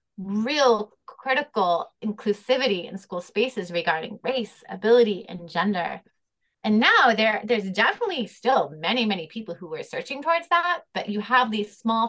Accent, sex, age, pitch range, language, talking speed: American, female, 30-49, 180-240 Hz, English, 150 wpm